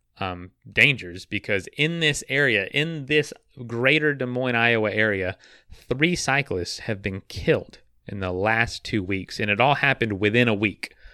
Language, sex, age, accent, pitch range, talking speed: English, male, 30-49, American, 95-130 Hz, 160 wpm